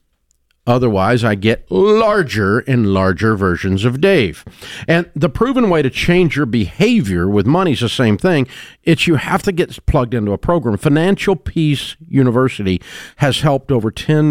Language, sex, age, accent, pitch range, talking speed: English, male, 50-69, American, 95-140 Hz, 165 wpm